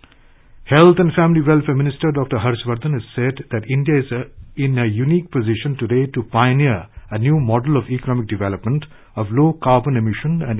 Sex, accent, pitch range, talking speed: male, Indian, 110-140 Hz, 165 wpm